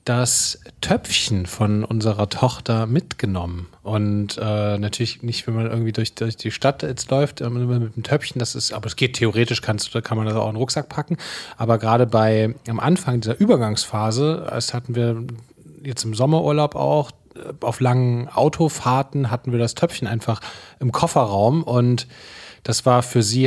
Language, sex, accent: German, male, German